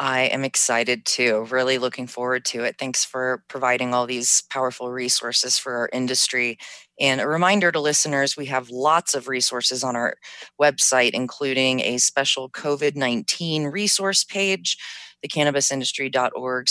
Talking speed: 140 wpm